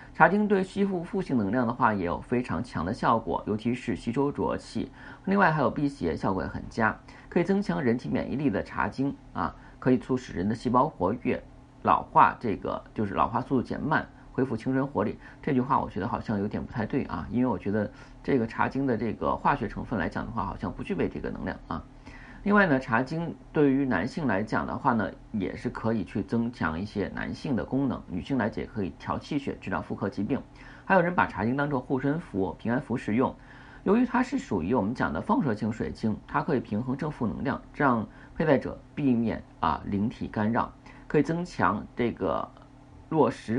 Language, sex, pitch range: Chinese, male, 120-160 Hz